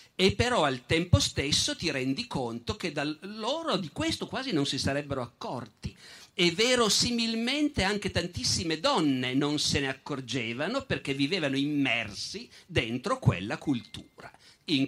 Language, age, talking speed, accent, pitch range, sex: Italian, 50-69, 135 wpm, native, 130-190 Hz, male